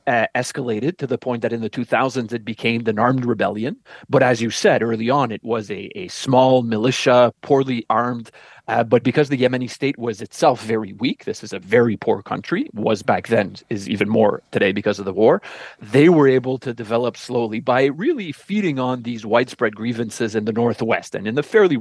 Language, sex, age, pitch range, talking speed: English, male, 30-49, 110-130 Hz, 205 wpm